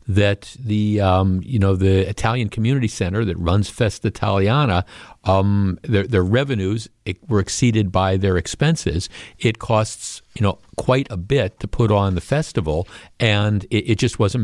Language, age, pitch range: English, 50-69, 100-120 Hz